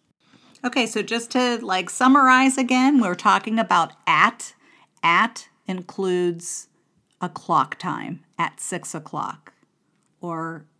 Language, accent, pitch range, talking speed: English, American, 165-215 Hz, 110 wpm